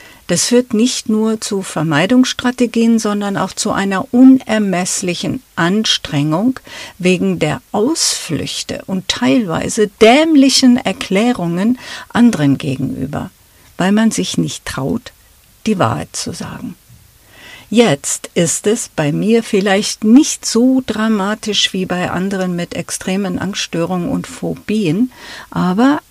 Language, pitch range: German, 180-240 Hz